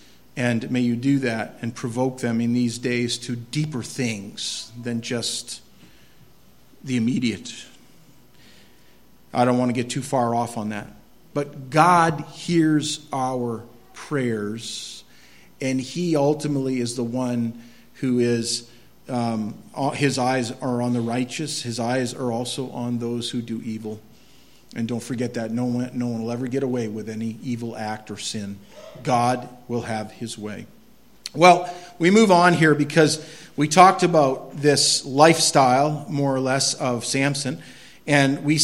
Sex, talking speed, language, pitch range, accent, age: male, 150 wpm, English, 120-155 Hz, American, 50-69